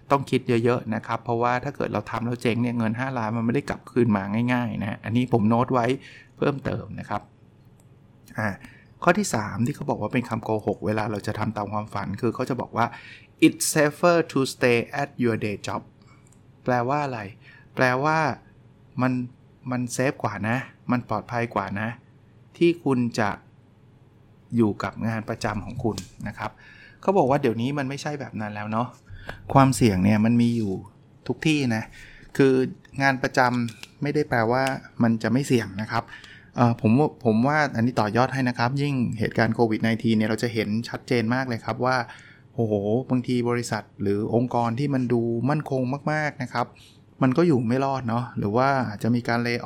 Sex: male